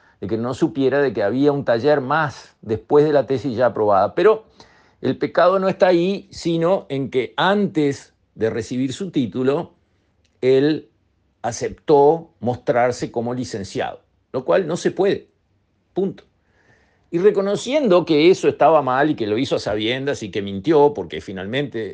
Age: 50-69